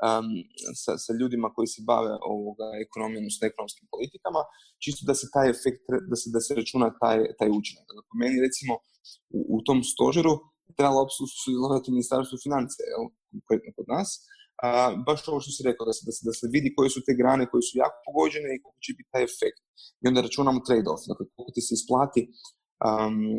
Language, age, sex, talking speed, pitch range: Croatian, 20-39, male, 190 wpm, 115-145 Hz